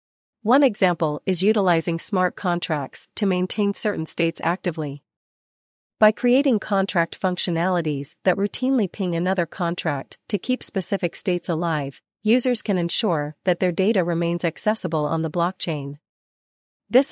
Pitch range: 165-205 Hz